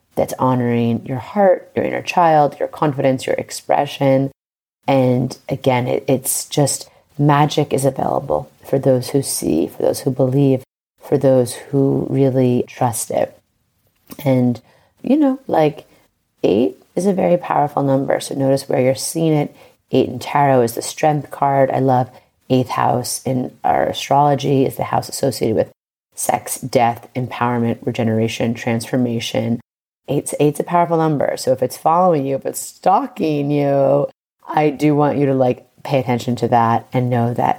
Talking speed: 155 wpm